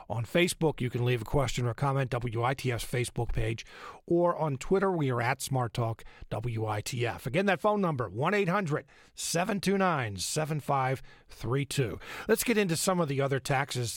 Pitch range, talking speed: 125-175 Hz, 145 wpm